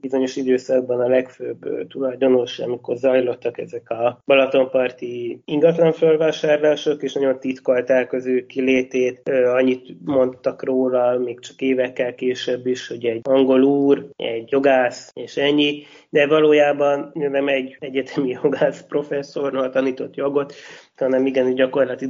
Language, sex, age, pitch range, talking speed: Hungarian, male, 20-39, 120-140 Hz, 120 wpm